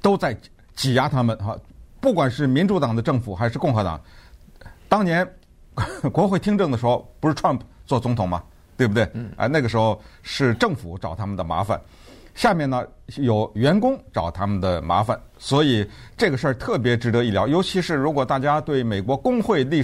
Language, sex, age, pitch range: Chinese, male, 50-69, 95-145 Hz